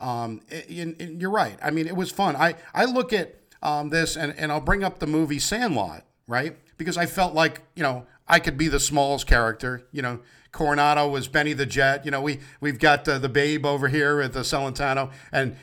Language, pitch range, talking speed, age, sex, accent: English, 140-200 Hz, 215 wpm, 50-69, male, American